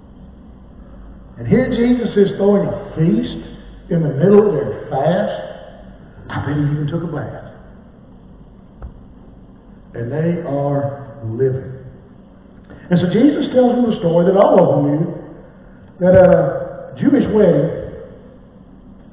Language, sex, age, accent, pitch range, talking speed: English, male, 60-79, American, 150-195 Hz, 125 wpm